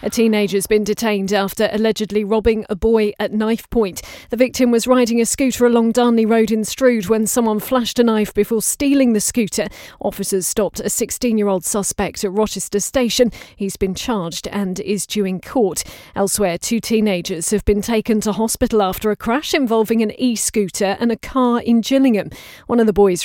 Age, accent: 40-59, British